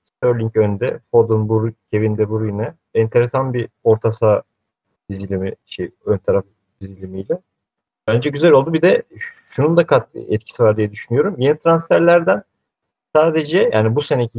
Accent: native